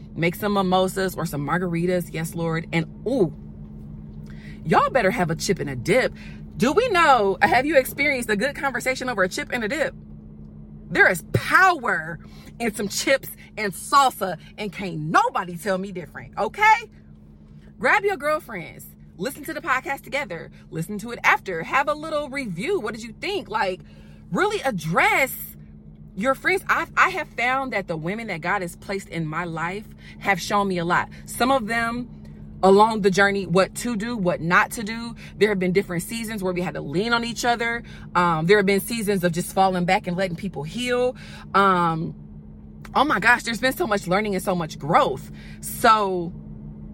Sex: female